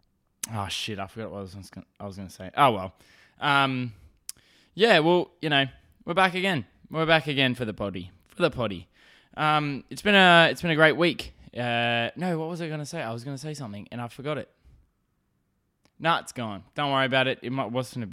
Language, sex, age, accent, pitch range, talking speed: English, male, 10-29, Australian, 115-155 Hz, 210 wpm